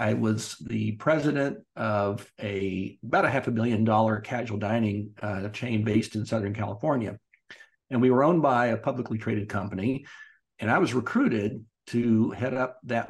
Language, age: English, 50-69